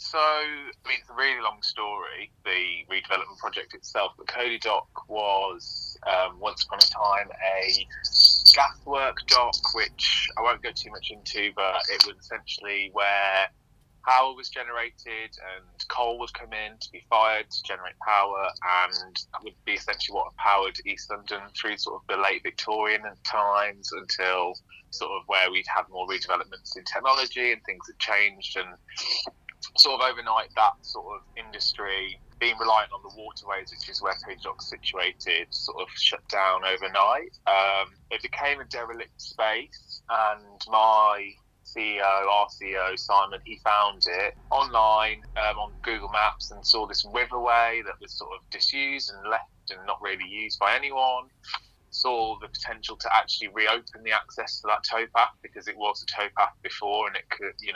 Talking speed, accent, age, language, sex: 170 wpm, British, 20-39, English, male